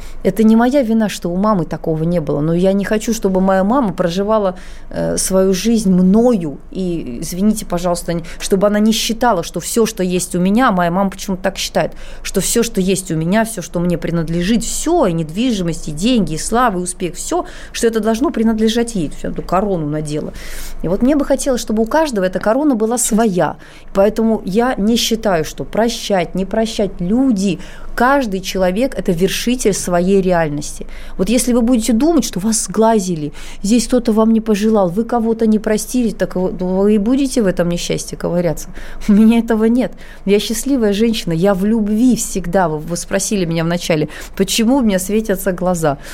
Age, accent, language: 20-39, native, Russian